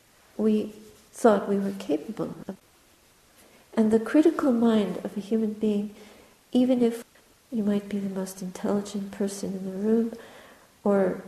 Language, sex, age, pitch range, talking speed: English, female, 50-69, 200-230 Hz, 145 wpm